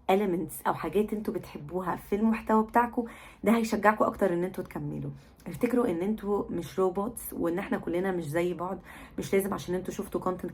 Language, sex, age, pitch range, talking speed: Arabic, female, 20-39, 170-200 Hz, 175 wpm